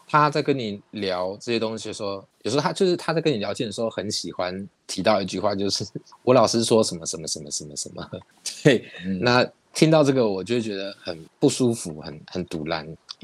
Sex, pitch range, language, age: male, 95-125 Hz, Chinese, 20-39